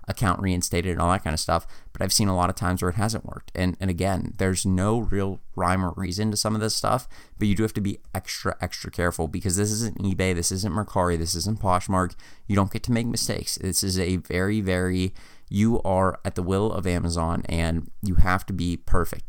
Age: 30-49